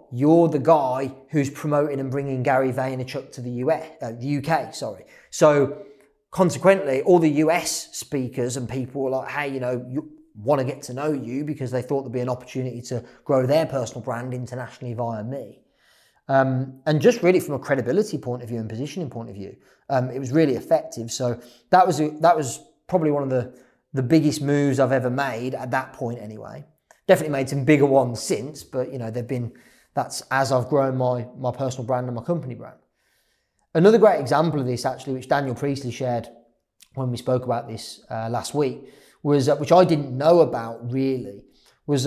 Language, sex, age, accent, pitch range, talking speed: English, male, 30-49, British, 125-150 Hz, 200 wpm